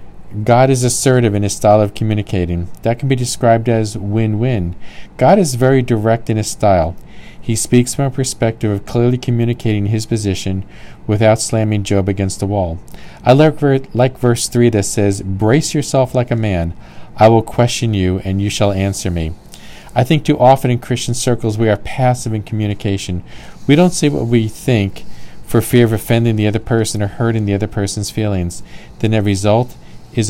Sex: male